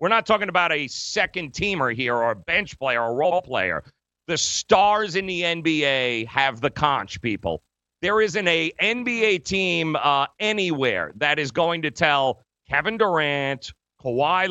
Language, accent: English, American